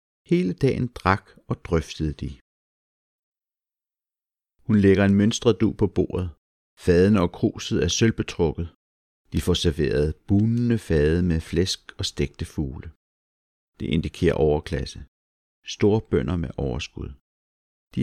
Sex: male